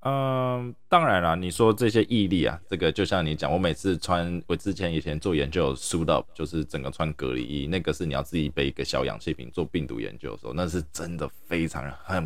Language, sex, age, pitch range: Chinese, male, 20-39, 75-105 Hz